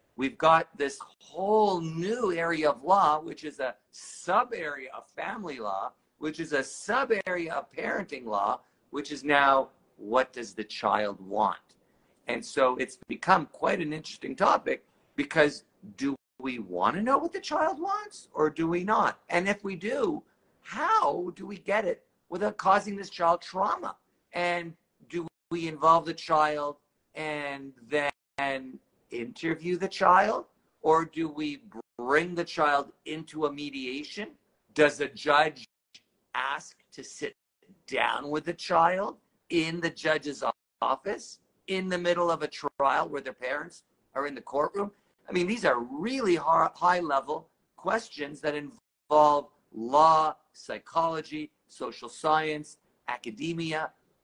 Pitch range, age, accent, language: 145-180 Hz, 50-69, American, English